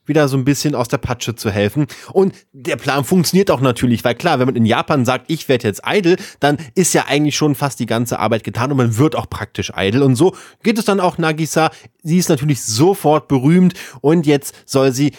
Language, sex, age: German, male, 30-49